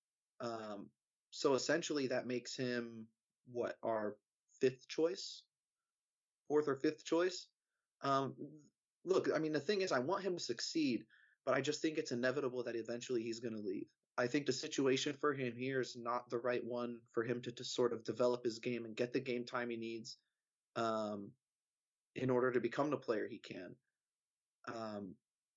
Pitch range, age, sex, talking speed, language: 115-135 Hz, 30-49, male, 180 wpm, English